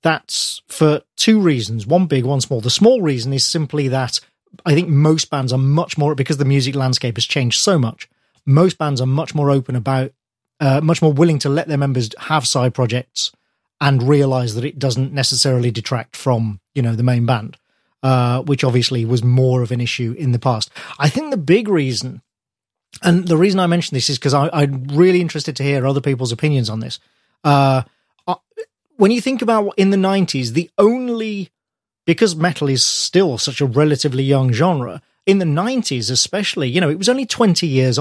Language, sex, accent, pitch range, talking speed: English, male, British, 130-170 Hz, 200 wpm